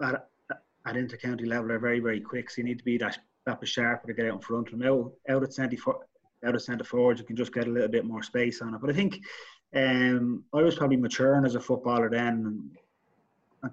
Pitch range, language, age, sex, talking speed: 115-125 Hz, English, 20-39, male, 255 wpm